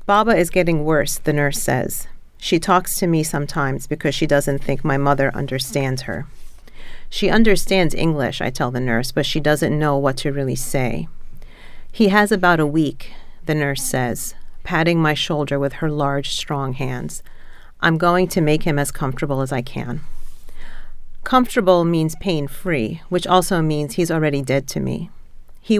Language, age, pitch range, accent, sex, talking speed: English, 40-59, 140-170 Hz, American, female, 170 wpm